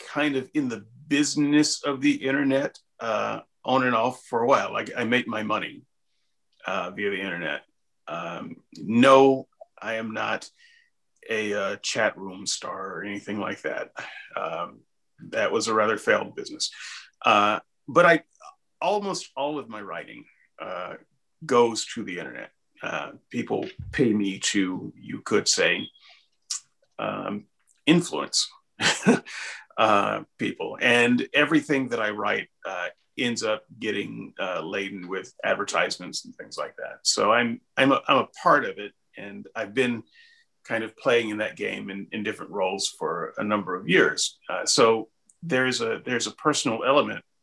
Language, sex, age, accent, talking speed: English, male, 40-59, American, 155 wpm